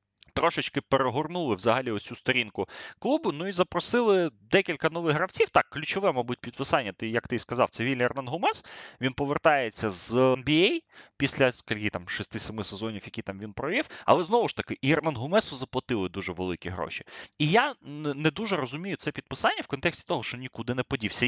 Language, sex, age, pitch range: Ukrainian, male, 20-39, 110-155 Hz